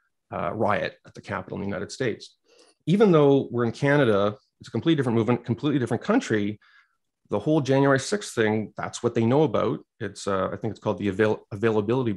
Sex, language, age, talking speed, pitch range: male, English, 30-49, 200 wpm, 110-140 Hz